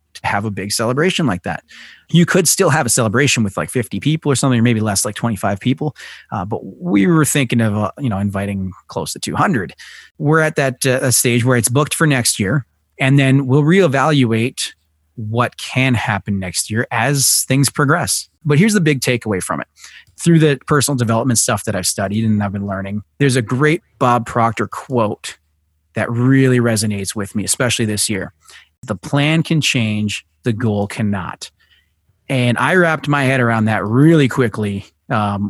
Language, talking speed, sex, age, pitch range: English, 190 wpm, male, 30-49, 105-135 Hz